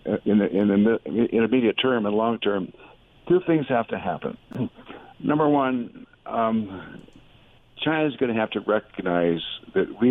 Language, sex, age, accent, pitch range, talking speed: English, male, 60-79, American, 95-115 Hz, 160 wpm